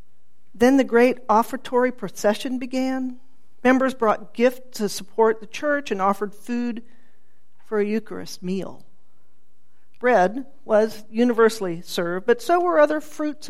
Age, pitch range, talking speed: 50-69, 190-255 Hz, 130 wpm